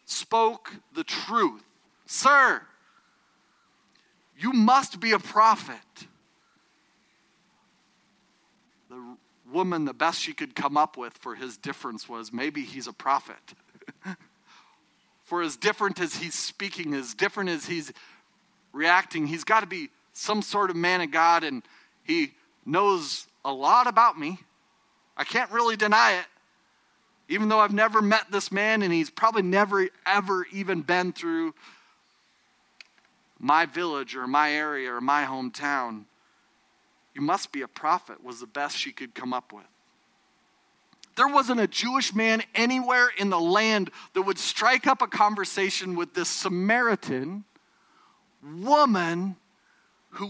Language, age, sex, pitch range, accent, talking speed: English, 40-59, male, 175-230 Hz, American, 135 wpm